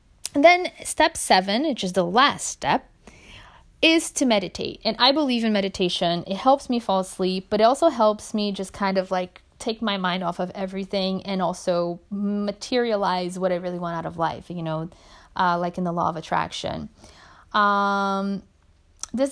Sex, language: female, English